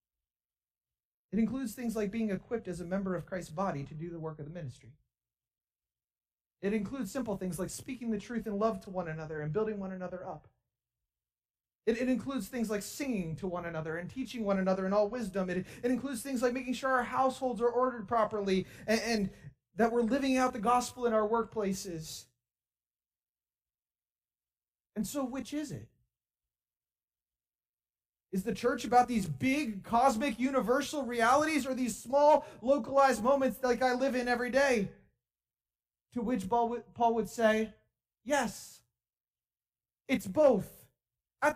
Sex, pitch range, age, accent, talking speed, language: male, 180-260 Hz, 30-49, American, 160 wpm, English